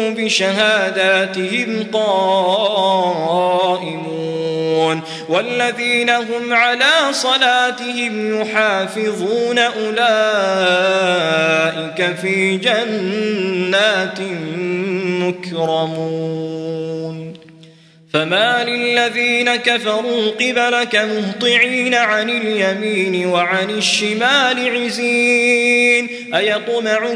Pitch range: 180-240 Hz